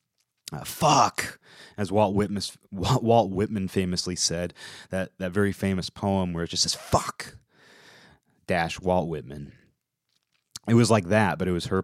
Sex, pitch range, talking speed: male, 80-115 Hz, 150 wpm